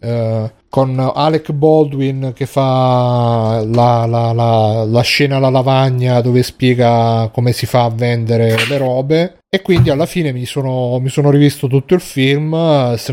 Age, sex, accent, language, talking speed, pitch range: 30-49, male, native, Italian, 160 wpm, 120-145 Hz